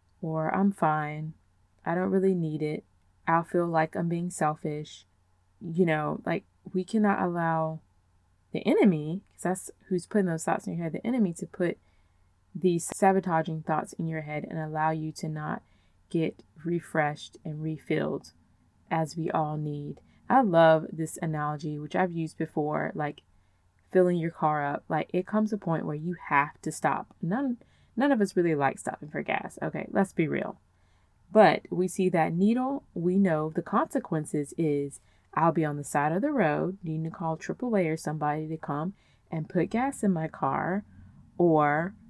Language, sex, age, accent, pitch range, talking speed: English, female, 20-39, American, 150-185 Hz, 175 wpm